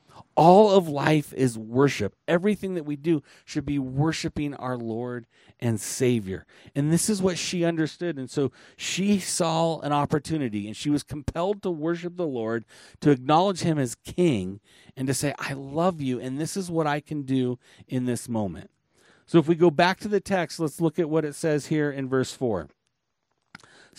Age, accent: 40-59, American